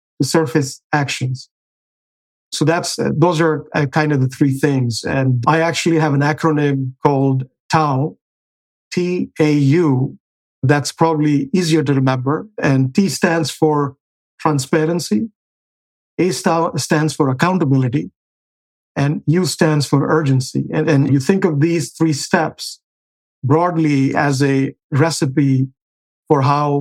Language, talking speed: English, 125 wpm